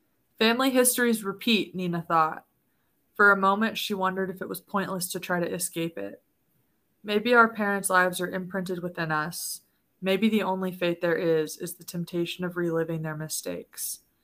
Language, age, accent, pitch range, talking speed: English, 20-39, American, 175-205 Hz, 170 wpm